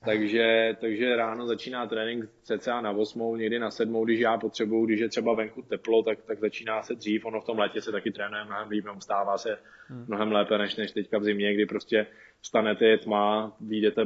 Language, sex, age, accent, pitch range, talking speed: Czech, male, 20-39, native, 110-115 Hz, 210 wpm